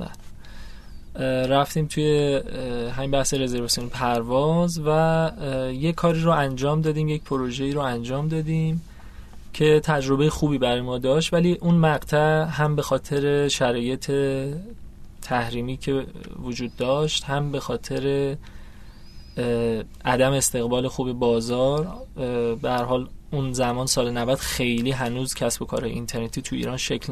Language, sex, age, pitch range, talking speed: Persian, male, 20-39, 125-150 Hz, 125 wpm